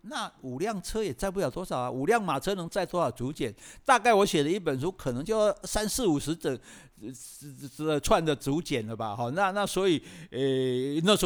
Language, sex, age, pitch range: Chinese, male, 50-69, 125-180 Hz